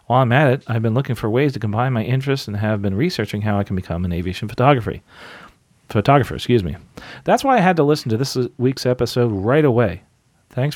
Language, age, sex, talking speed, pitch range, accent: English, 40-59, male, 225 wpm, 100-130 Hz, American